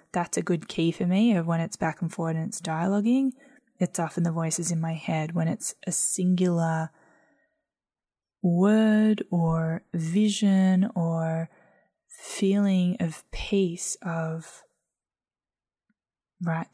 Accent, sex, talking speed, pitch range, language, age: Australian, female, 125 wpm, 170-195 Hz, English, 10-29